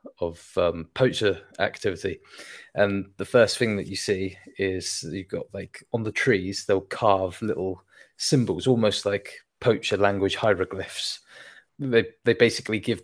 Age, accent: 20-39, British